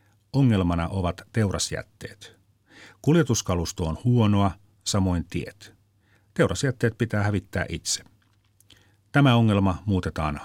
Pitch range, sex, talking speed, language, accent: 95-110 Hz, male, 85 wpm, Finnish, native